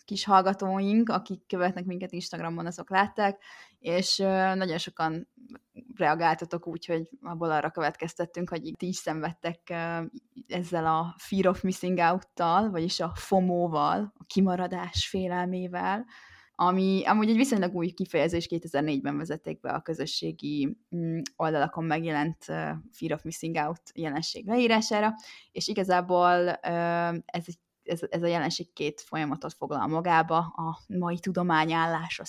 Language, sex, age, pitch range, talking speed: Hungarian, female, 20-39, 160-190 Hz, 125 wpm